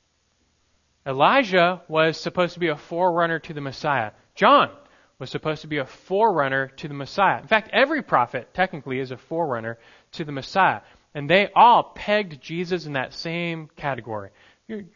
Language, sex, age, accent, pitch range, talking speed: English, male, 30-49, American, 120-180 Hz, 165 wpm